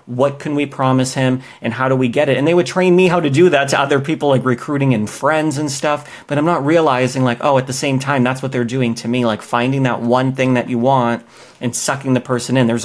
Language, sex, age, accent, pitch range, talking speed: English, male, 30-49, American, 120-140 Hz, 275 wpm